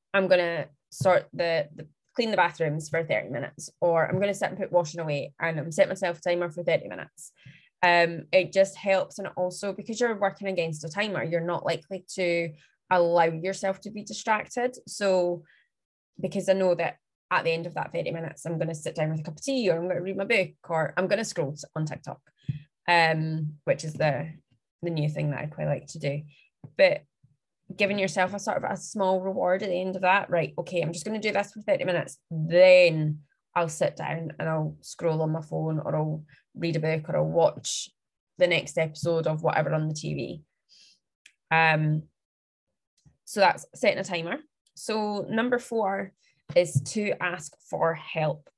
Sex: female